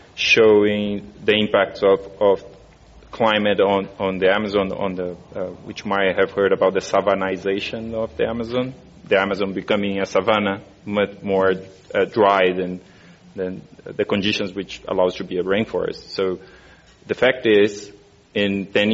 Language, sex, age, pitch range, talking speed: English, male, 30-49, 95-105 Hz, 150 wpm